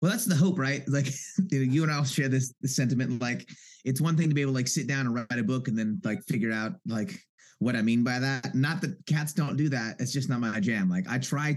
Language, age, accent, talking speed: English, 30-49, American, 275 wpm